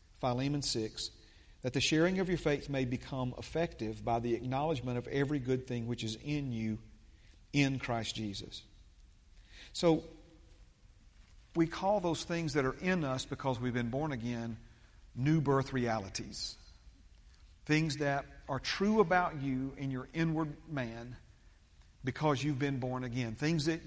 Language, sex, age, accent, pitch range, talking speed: English, male, 40-59, American, 120-155 Hz, 150 wpm